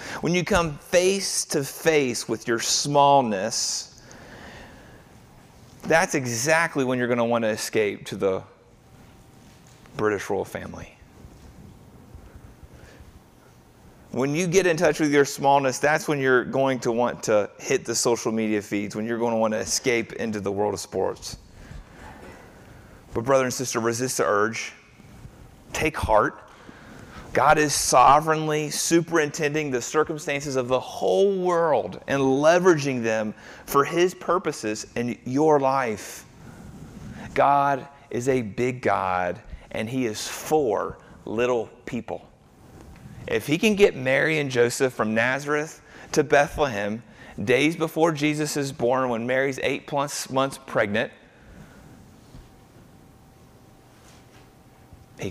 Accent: American